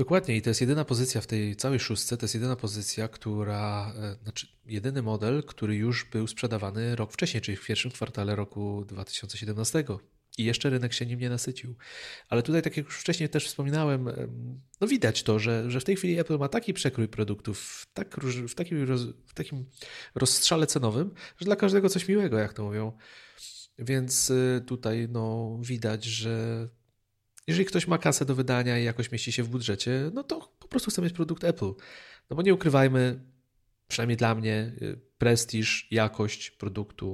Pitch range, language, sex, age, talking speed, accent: 110-135 Hz, Polish, male, 30-49, 180 wpm, native